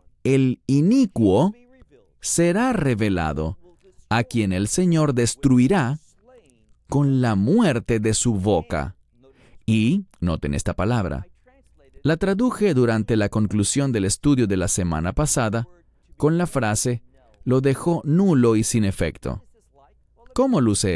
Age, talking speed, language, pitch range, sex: 30-49, 115 wpm, English, 105-165 Hz, male